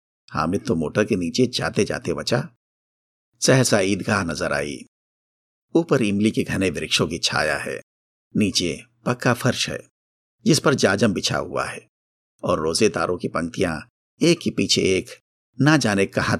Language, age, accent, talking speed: Hindi, 50-69, native, 155 wpm